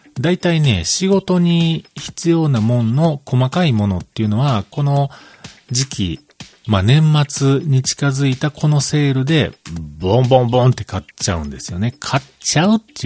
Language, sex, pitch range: Japanese, male, 105-160 Hz